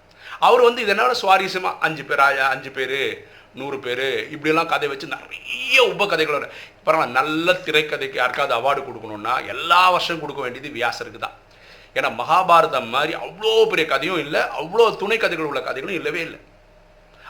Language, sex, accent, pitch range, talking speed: Tamil, male, native, 150-225 Hz, 150 wpm